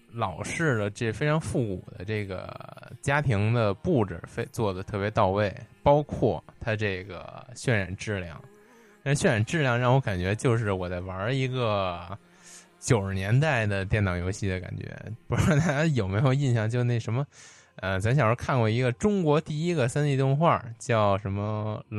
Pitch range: 100-140 Hz